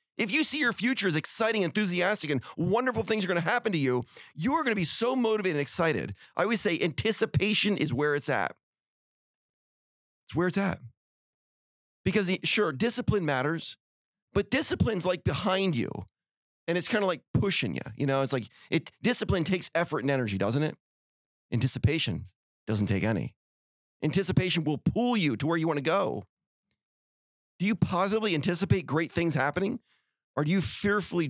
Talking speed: 175 wpm